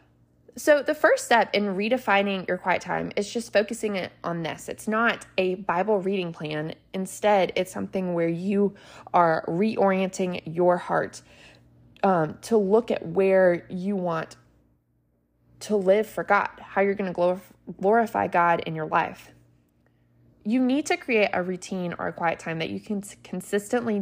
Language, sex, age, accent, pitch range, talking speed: English, female, 20-39, American, 170-225 Hz, 160 wpm